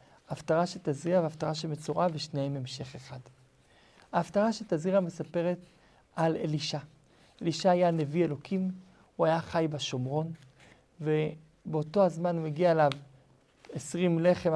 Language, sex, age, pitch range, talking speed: Hebrew, male, 50-69, 145-175 Hz, 110 wpm